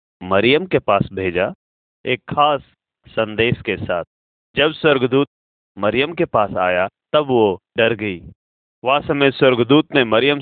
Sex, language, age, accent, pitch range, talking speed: male, Hindi, 40-59, native, 95-140 Hz, 140 wpm